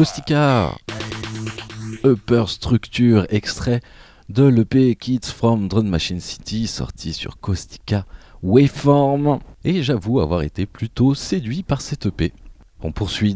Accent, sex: French, male